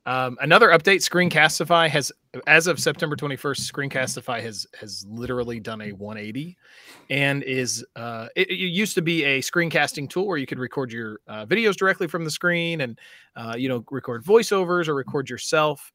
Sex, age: male, 30-49